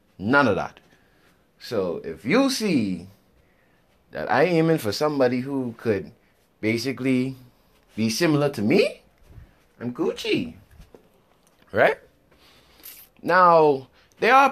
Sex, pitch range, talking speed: male, 115-195 Hz, 105 wpm